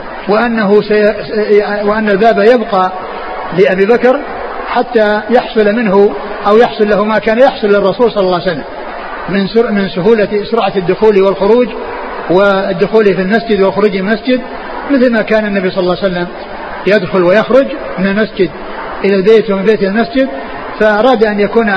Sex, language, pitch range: male, Arabic, 190-225 Hz